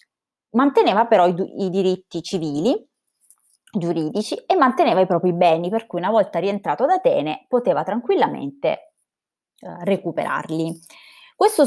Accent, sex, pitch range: native, female, 170-235 Hz